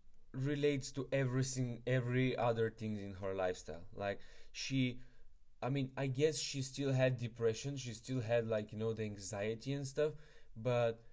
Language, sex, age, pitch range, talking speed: English, male, 20-39, 115-135 Hz, 160 wpm